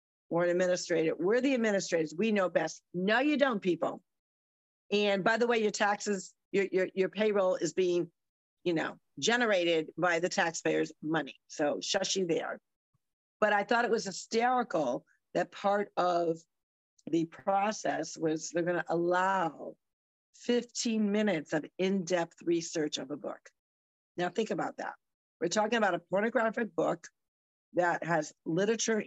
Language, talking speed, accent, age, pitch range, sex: English, 145 wpm, American, 50-69, 165-210 Hz, female